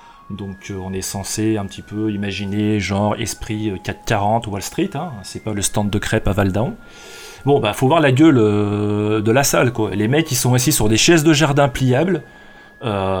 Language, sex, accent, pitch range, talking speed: French, male, French, 110-155 Hz, 200 wpm